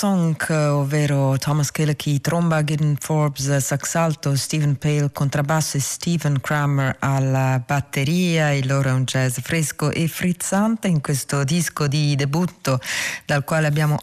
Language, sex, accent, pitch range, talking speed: Italian, female, native, 140-175 Hz, 135 wpm